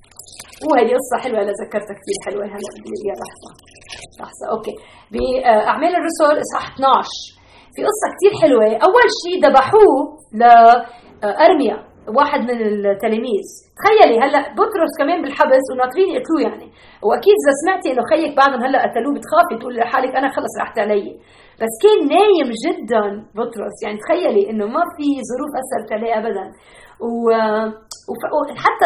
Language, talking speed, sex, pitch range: Arabic, 135 wpm, female, 220-300 Hz